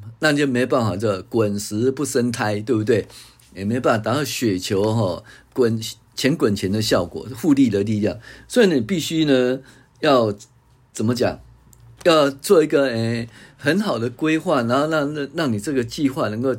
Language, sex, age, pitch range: Chinese, male, 50-69, 115-150 Hz